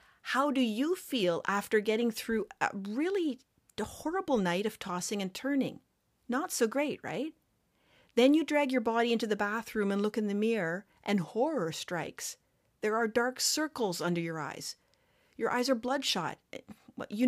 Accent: American